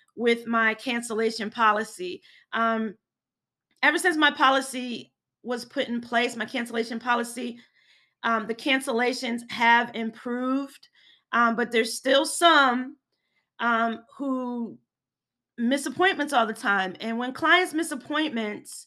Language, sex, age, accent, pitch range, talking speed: English, female, 30-49, American, 230-270 Hz, 120 wpm